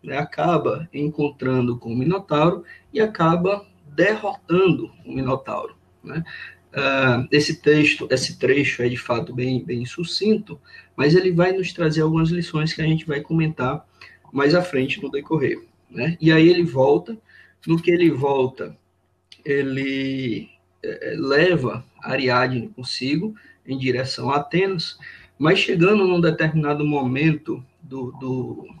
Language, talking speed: Portuguese, 130 wpm